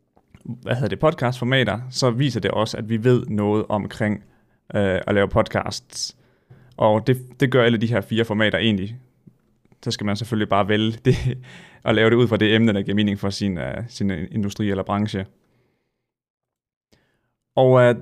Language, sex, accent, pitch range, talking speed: Danish, male, native, 105-125 Hz, 165 wpm